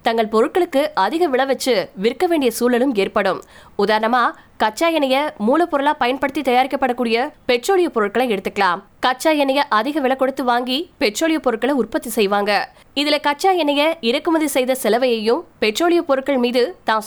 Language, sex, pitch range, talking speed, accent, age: Tamil, female, 230-290 Hz, 100 wpm, native, 20-39